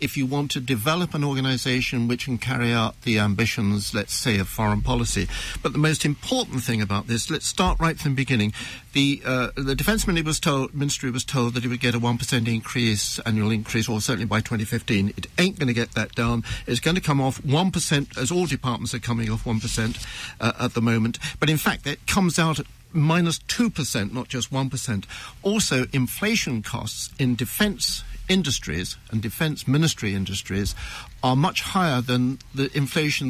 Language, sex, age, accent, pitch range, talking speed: English, male, 60-79, British, 115-145 Hz, 180 wpm